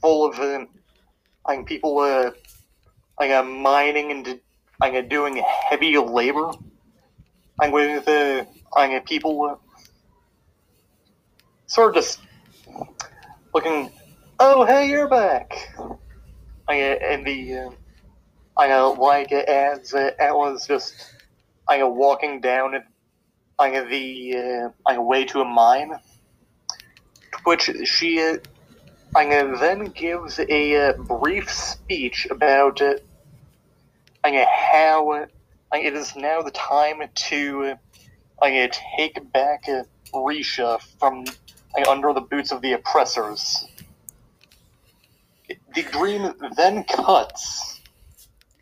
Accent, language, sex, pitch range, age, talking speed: American, English, male, 130-150 Hz, 30-49, 110 wpm